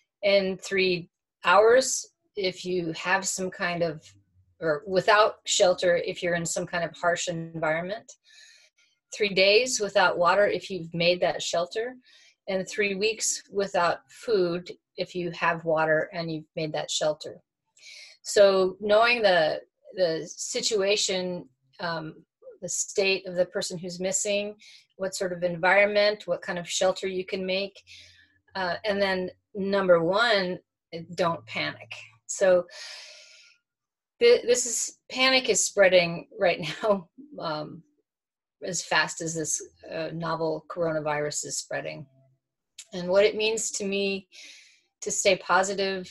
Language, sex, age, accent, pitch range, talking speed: English, female, 30-49, American, 170-205 Hz, 130 wpm